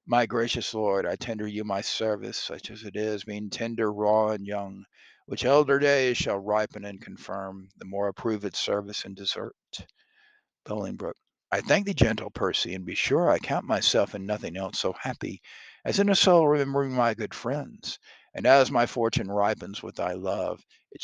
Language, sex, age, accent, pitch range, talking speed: English, male, 50-69, American, 100-130 Hz, 185 wpm